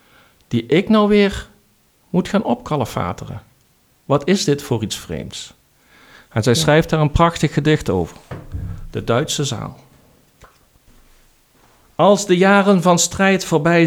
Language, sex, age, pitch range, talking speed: Dutch, male, 50-69, 125-170 Hz, 130 wpm